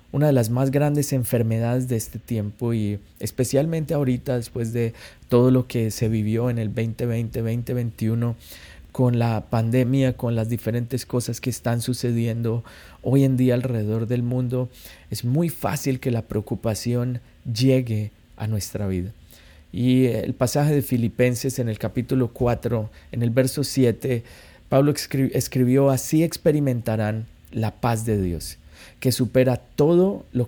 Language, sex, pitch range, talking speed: Spanish, male, 110-130 Hz, 150 wpm